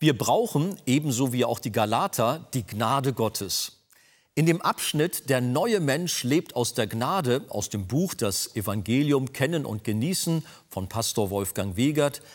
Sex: male